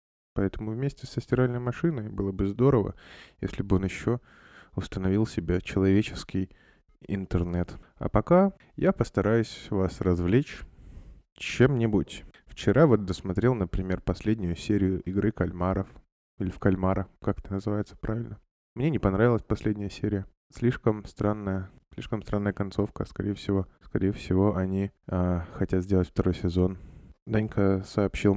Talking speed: 125 wpm